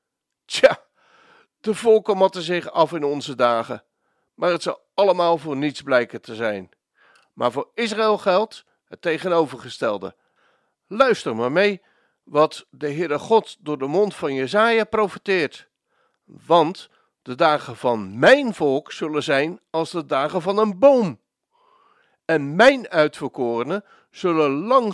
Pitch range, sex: 155-230 Hz, male